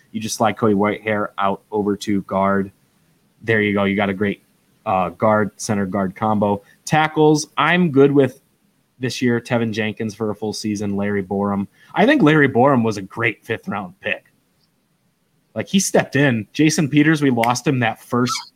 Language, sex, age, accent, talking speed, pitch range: English, male, 20-39, American, 180 wpm, 100-130 Hz